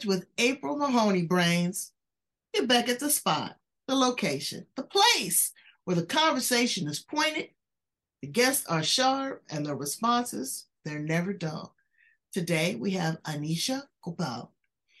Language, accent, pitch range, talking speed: English, American, 175-245 Hz, 130 wpm